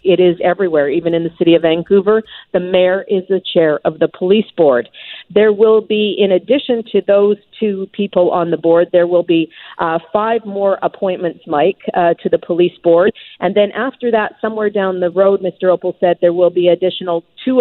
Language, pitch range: English, 175-205 Hz